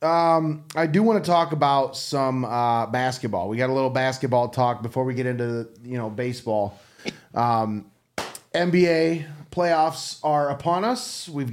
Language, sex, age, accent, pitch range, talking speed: English, male, 30-49, American, 125-165 Hz, 160 wpm